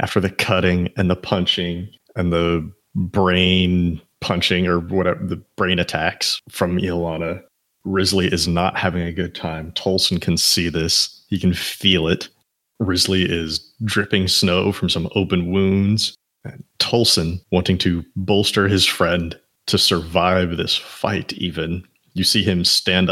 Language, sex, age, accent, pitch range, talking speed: English, male, 30-49, American, 90-105 Hz, 145 wpm